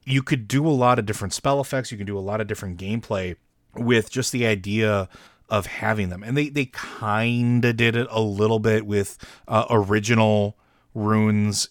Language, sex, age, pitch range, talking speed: English, male, 30-49, 100-115 Hz, 195 wpm